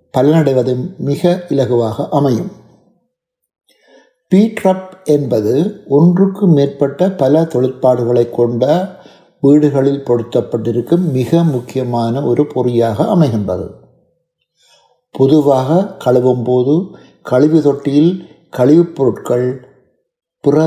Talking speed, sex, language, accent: 75 wpm, male, Tamil, native